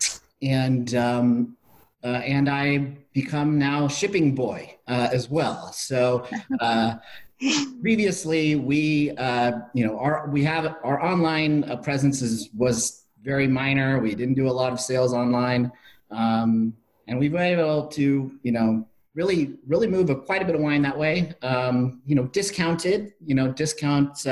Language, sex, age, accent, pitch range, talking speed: English, male, 30-49, American, 120-155 Hz, 160 wpm